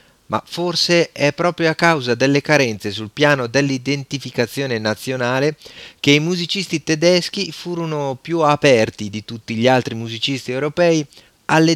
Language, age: Italian, 30-49